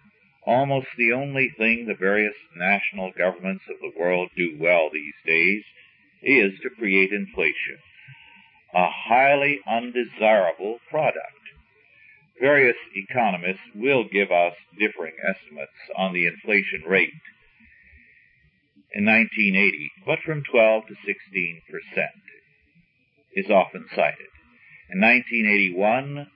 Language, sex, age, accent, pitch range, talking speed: English, male, 50-69, American, 95-135 Hz, 105 wpm